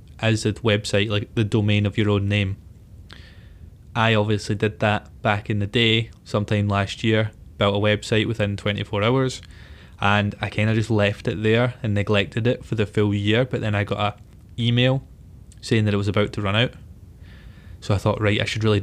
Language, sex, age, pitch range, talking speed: English, male, 20-39, 100-110 Hz, 200 wpm